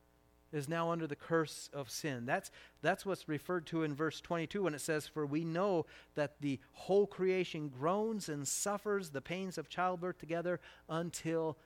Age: 40-59